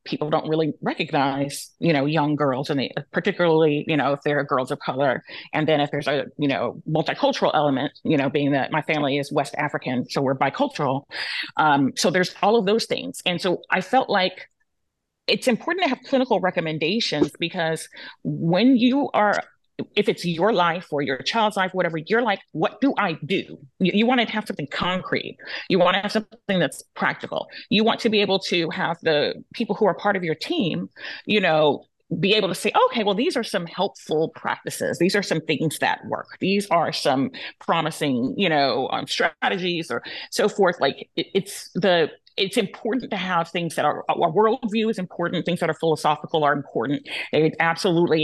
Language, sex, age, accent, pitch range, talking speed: English, female, 30-49, American, 155-210 Hz, 195 wpm